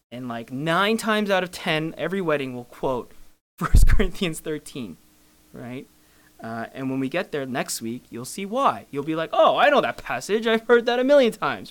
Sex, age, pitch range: male, 20-39, 120-195 Hz